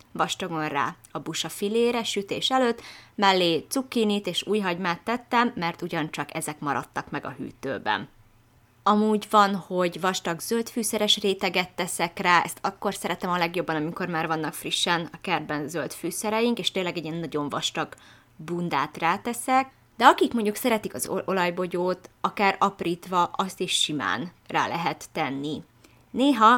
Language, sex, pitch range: Hungarian, female, 165-210 Hz